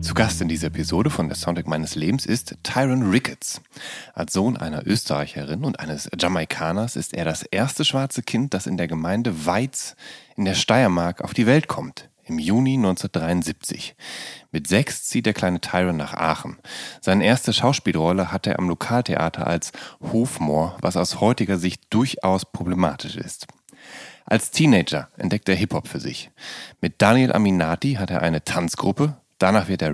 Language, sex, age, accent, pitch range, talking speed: German, male, 30-49, German, 85-110 Hz, 165 wpm